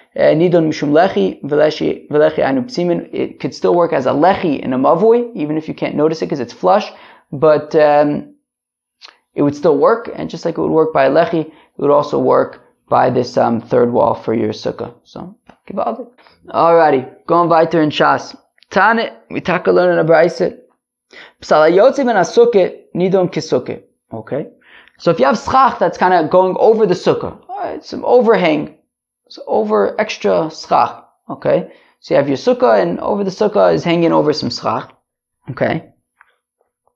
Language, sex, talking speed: English, male, 170 wpm